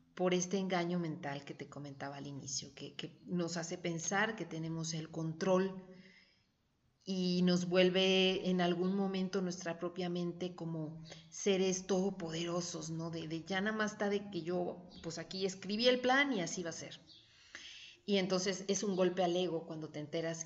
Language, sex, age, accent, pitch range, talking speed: Spanish, female, 40-59, Mexican, 165-205 Hz, 175 wpm